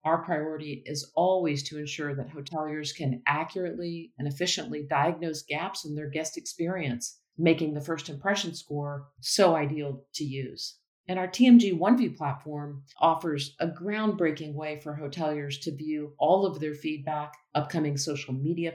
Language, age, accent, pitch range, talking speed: English, 40-59, American, 145-170 Hz, 150 wpm